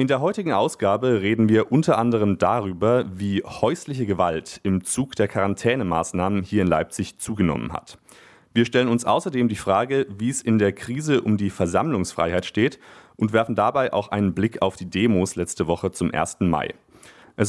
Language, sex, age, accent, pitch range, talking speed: German, male, 30-49, German, 95-120 Hz, 175 wpm